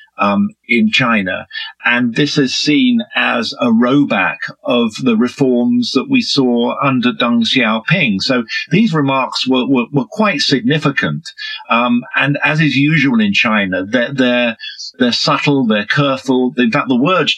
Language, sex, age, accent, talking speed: English, male, 50-69, British, 150 wpm